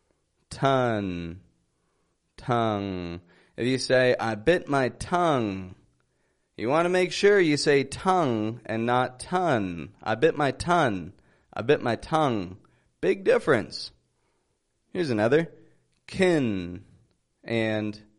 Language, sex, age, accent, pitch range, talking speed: English, male, 30-49, American, 110-165 Hz, 110 wpm